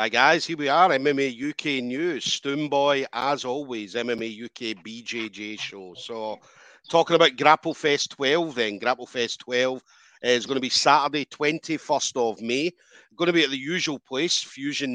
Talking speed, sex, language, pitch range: 165 wpm, male, English, 120-145 Hz